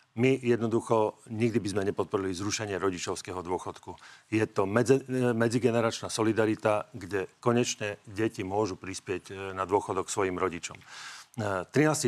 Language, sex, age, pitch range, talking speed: Slovak, male, 40-59, 105-125 Hz, 115 wpm